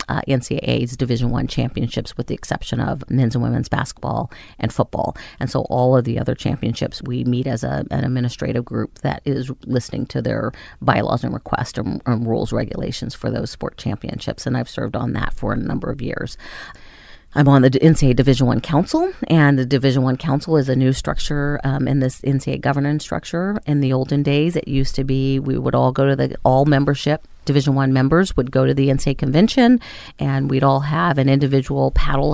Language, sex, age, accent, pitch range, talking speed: English, female, 40-59, American, 130-145 Hz, 200 wpm